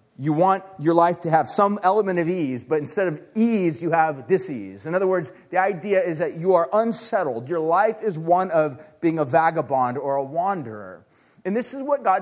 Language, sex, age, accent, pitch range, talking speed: English, male, 30-49, American, 155-205 Hz, 215 wpm